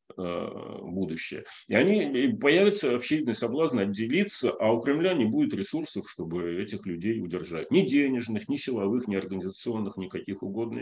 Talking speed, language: 140 wpm, Russian